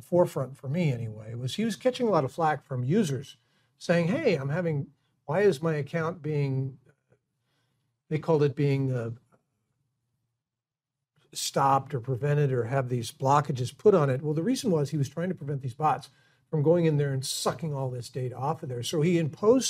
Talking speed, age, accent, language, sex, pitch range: 195 wpm, 50-69, American, English, male, 130-165 Hz